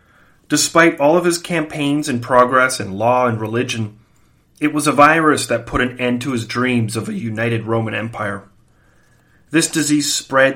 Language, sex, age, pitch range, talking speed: English, male, 30-49, 120-150 Hz, 170 wpm